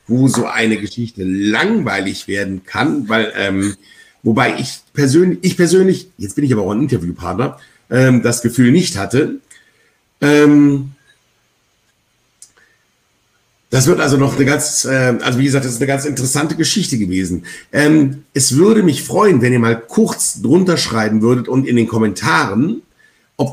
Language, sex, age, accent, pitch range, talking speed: German, male, 60-79, German, 115-140 Hz, 155 wpm